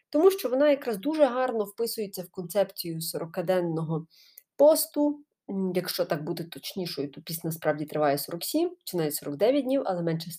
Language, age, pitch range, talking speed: Ukrainian, 30-49, 175-285 Hz, 150 wpm